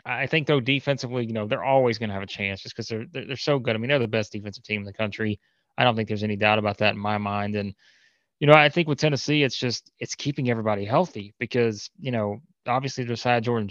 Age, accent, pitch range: 20-39, American, 110-125 Hz